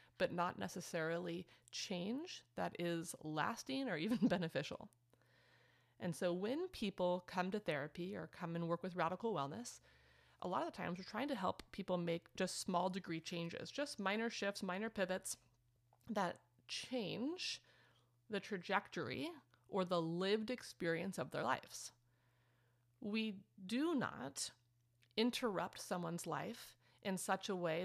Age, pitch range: 30-49, 160-205 Hz